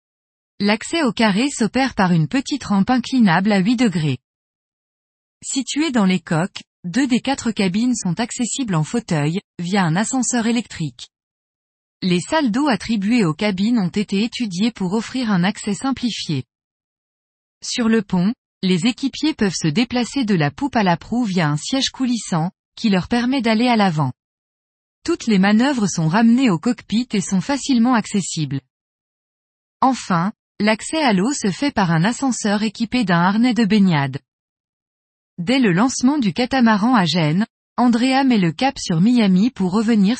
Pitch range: 175-245 Hz